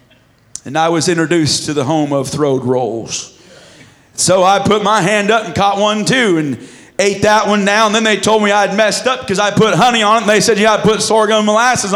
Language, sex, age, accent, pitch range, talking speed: English, male, 40-59, American, 205-250 Hz, 240 wpm